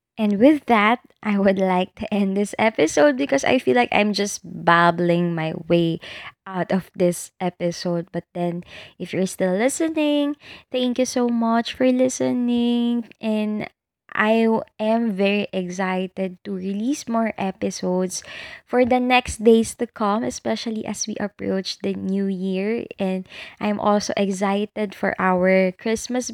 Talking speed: 145 wpm